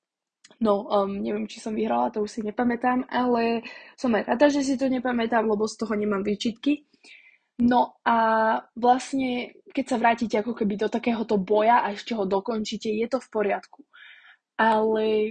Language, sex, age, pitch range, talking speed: Slovak, female, 20-39, 220-270 Hz, 170 wpm